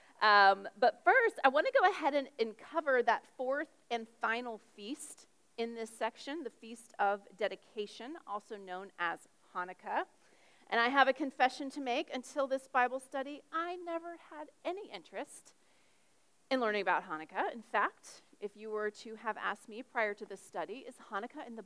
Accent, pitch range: American, 205-295 Hz